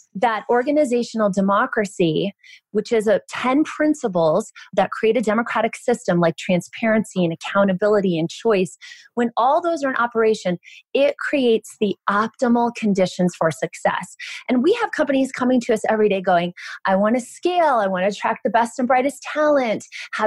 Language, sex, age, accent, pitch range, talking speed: English, female, 20-39, American, 190-265 Hz, 165 wpm